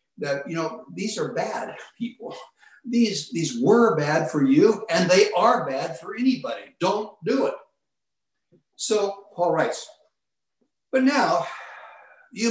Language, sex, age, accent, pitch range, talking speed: English, male, 60-79, American, 175-245 Hz, 135 wpm